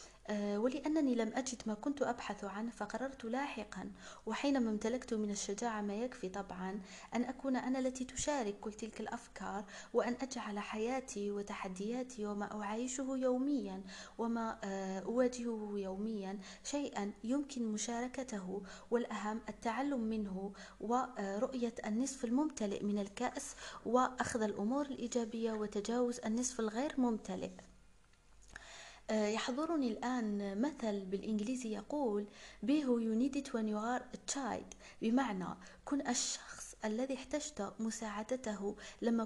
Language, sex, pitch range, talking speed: Arabic, female, 210-255 Hz, 100 wpm